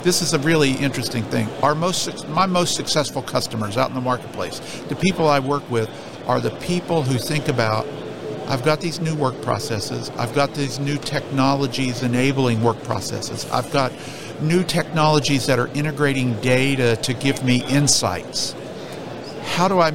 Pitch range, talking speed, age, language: 130-155 Hz, 170 wpm, 50-69, English